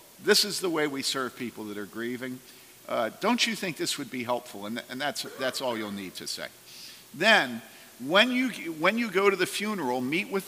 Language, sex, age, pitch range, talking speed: English, male, 50-69, 130-195 Hz, 225 wpm